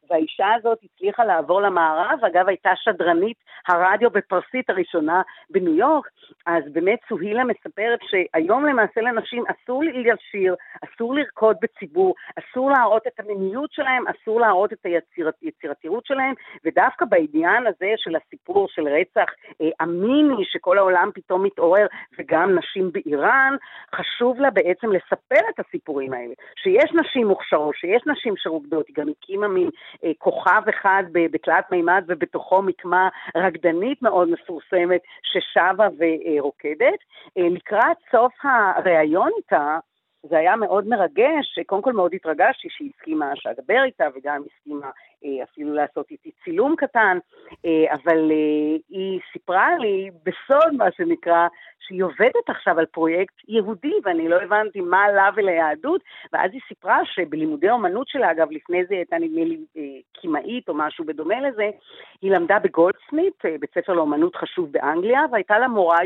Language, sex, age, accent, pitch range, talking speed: Hebrew, female, 50-69, native, 175-295 Hz, 140 wpm